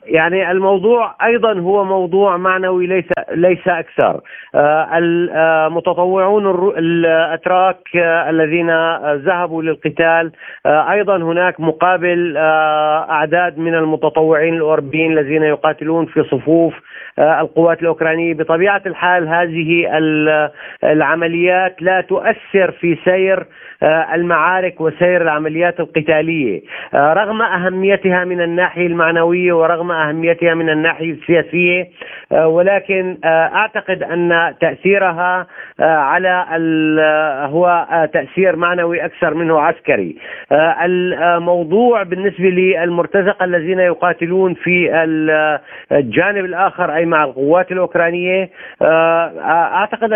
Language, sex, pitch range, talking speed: Arabic, male, 160-185 Hz, 85 wpm